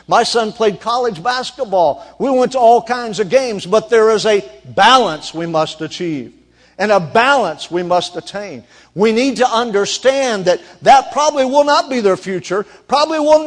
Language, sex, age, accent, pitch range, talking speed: English, male, 50-69, American, 185-270 Hz, 180 wpm